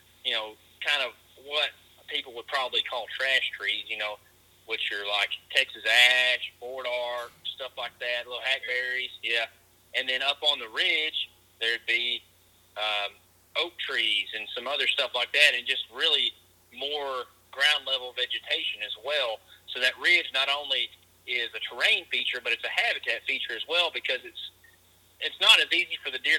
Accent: American